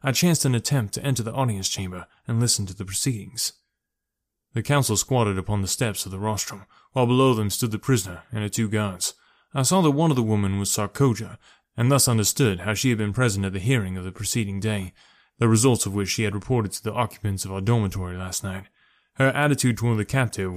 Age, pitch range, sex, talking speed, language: 20-39, 100-130 Hz, male, 225 wpm, English